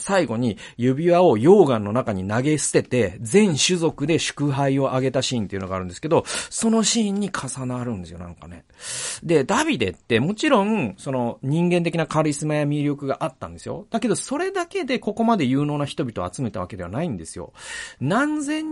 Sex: male